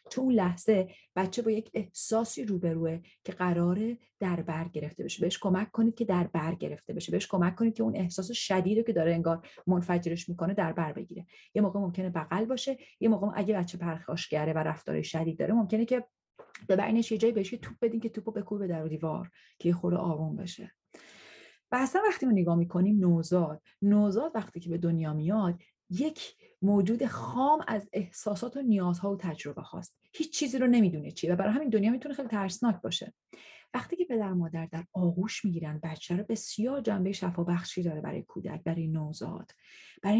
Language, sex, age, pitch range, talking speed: Persian, female, 30-49, 175-225 Hz, 185 wpm